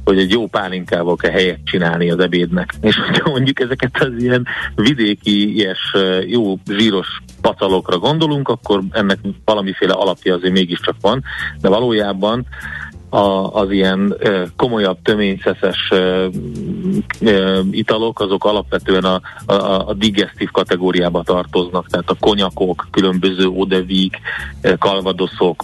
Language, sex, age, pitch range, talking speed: Hungarian, male, 40-59, 90-105 Hz, 120 wpm